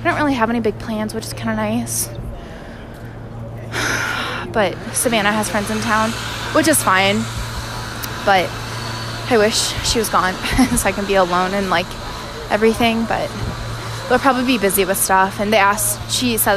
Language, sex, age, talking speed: English, female, 20-39, 165 wpm